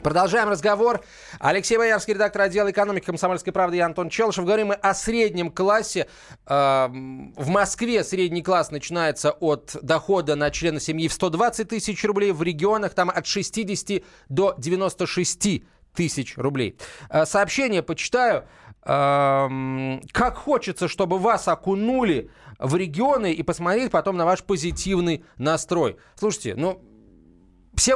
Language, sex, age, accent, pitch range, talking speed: Russian, male, 30-49, native, 145-200 Hz, 125 wpm